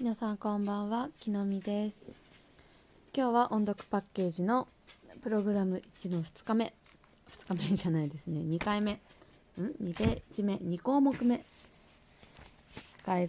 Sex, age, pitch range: female, 20-39, 170-215 Hz